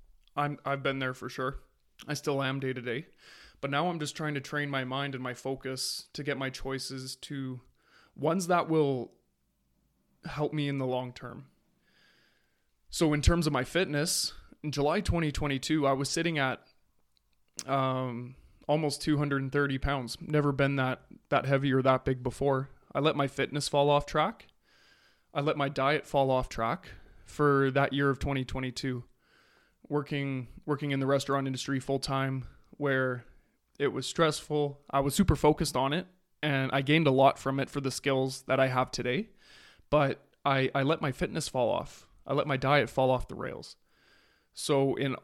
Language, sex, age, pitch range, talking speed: English, male, 20-39, 130-150 Hz, 185 wpm